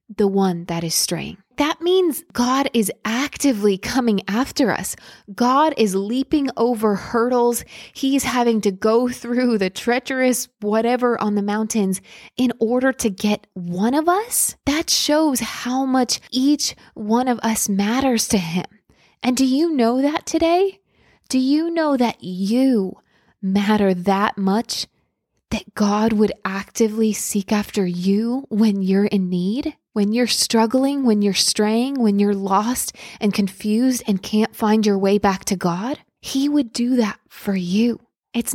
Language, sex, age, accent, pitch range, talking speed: English, female, 20-39, American, 205-265 Hz, 155 wpm